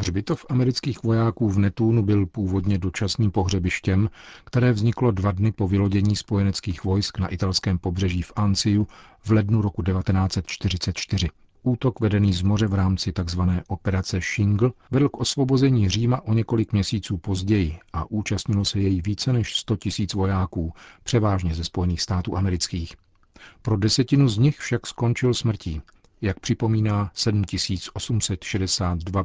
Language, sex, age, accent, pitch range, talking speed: Czech, male, 40-59, native, 95-110 Hz, 135 wpm